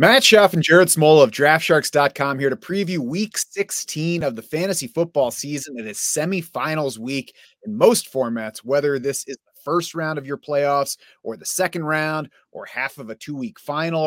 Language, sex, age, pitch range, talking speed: English, male, 30-49, 125-170 Hz, 185 wpm